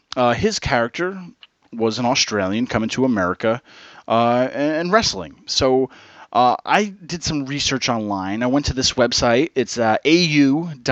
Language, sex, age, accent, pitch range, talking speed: English, male, 30-49, American, 120-150 Hz, 145 wpm